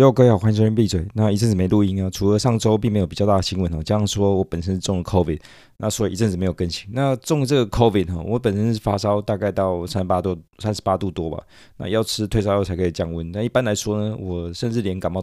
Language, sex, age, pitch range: Chinese, male, 20-39, 90-110 Hz